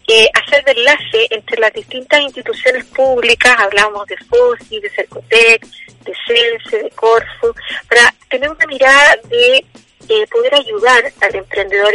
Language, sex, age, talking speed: Spanish, female, 30-49, 140 wpm